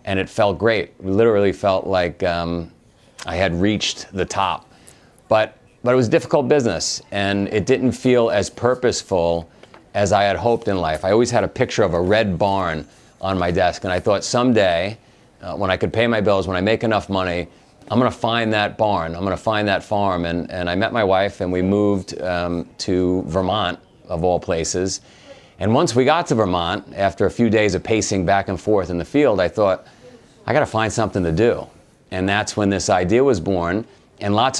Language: English